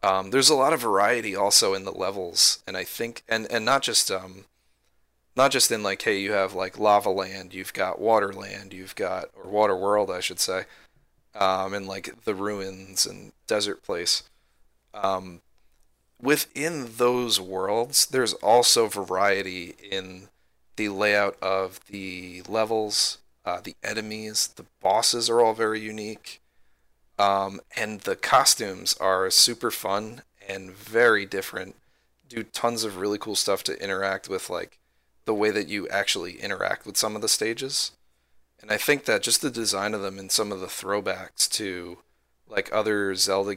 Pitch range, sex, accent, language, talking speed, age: 95-105 Hz, male, American, English, 160 wpm, 30-49